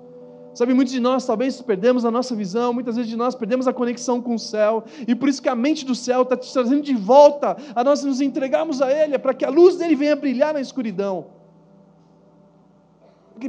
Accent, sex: Brazilian, male